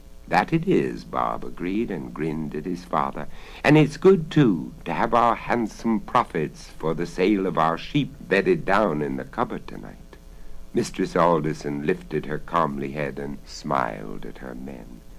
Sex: male